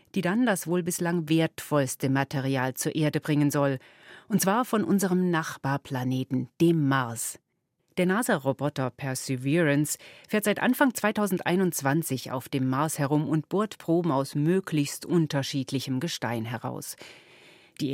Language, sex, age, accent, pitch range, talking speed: German, female, 40-59, German, 135-185 Hz, 125 wpm